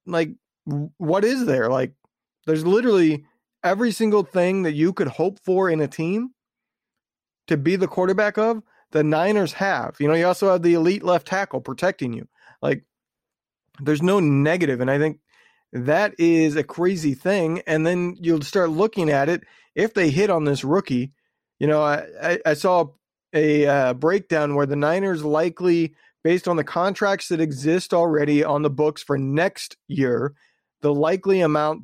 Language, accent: English, American